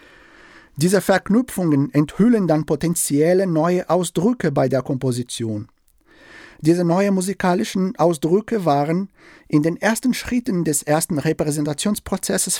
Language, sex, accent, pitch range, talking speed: German, male, German, 140-180 Hz, 105 wpm